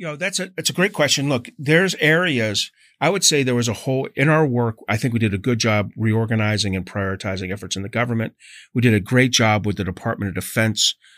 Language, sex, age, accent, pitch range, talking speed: English, male, 40-59, American, 100-120 Hz, 245 wpm